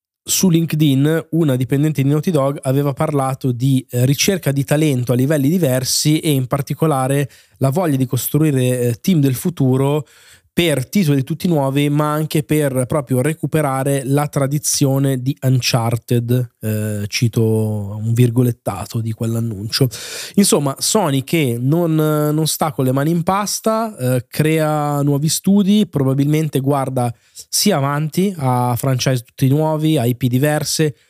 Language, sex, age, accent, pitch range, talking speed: Italian, male, 20-39, native, 125-145 Hz, 135 wpm